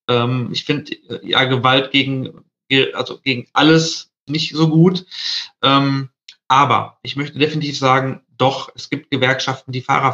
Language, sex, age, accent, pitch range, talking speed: German, male, 40-59, German, 130-155 Hz, 130 wpm